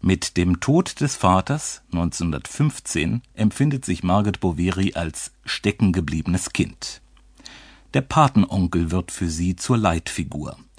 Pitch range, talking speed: 90-120 Hz, 110 wpm